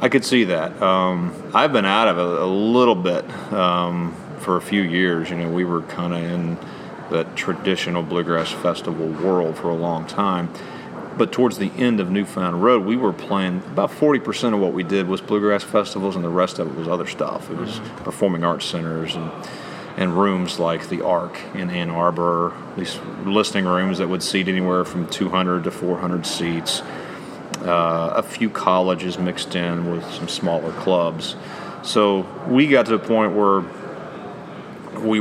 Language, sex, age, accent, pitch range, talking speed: English, male, 40-59, American, 85-100 Hz, 180 wpm